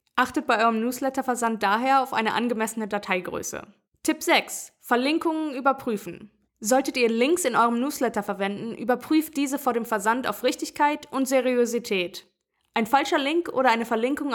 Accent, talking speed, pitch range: German, 145 wpm, 220-285 Hz